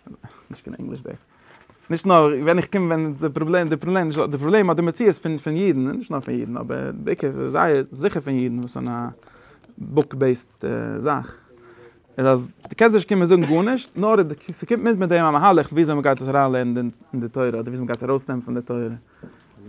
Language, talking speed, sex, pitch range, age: English, 175 wpm, male, 125-155 Hz, 30-49